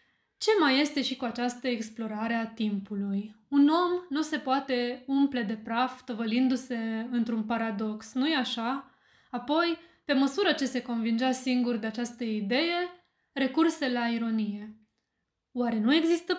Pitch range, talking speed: 230-285 Hz, 140 wpm